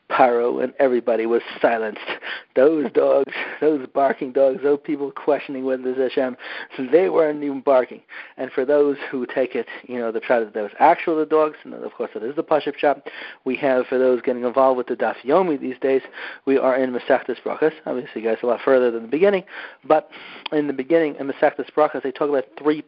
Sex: male